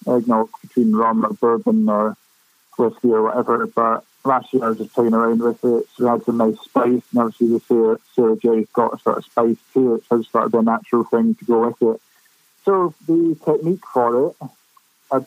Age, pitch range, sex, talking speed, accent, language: 20-39, 115-135 Hz, male, 215 wpm, British, English